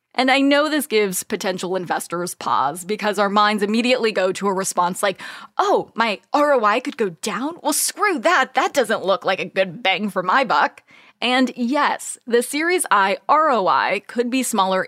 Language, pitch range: English, 195-270 Hz